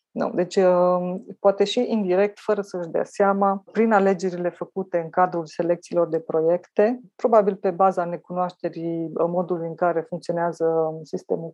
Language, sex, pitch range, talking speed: Romanian, female, 170-190 Hz, 135 wpm